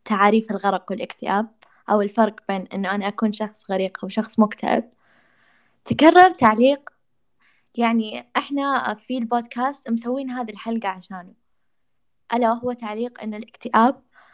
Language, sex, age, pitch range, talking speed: Arabic, female, 10-29, 210-245 Hz, 120 wpm